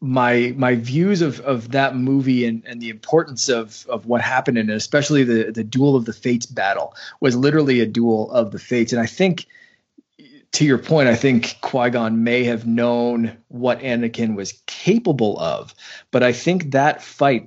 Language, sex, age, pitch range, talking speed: English, male, 20-39, 115-140 Hz, 190 wpm